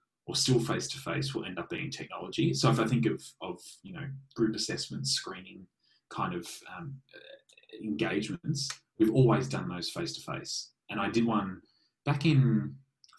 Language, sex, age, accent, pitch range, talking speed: English, male, 20-39, Australian, 105-150 Hz, 160 wpm